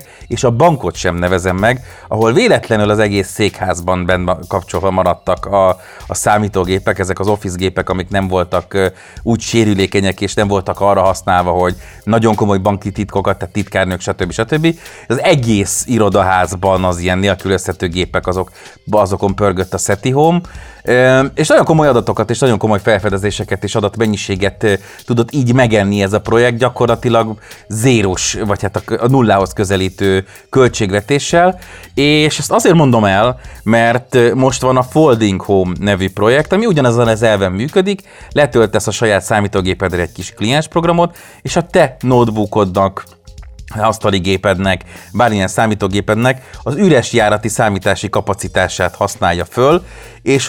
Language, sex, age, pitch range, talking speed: Hungarian, male, 30-49, 95-120 Hz, 140 wpm